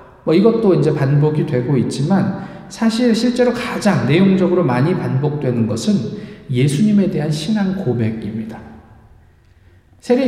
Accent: native